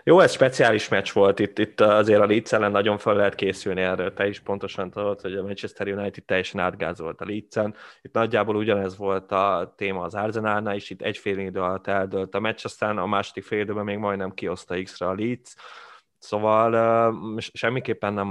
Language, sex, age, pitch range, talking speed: Hungarian, male, 20-39, 95-110 Hz, 185 wpm